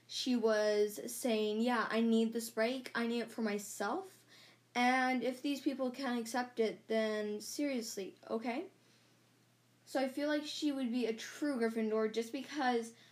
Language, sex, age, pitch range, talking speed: English, female, 10-29, 215-250 Hz, 160 wpm